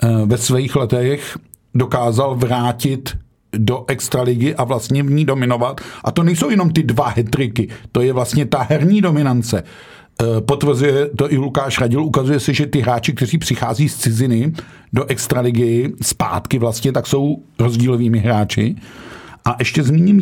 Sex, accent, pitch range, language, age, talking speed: male, native, 120-145 Hz, Czech, 50-69, 150 wpm